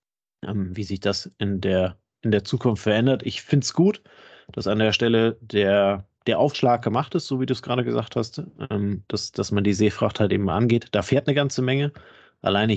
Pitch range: 100-125 Hz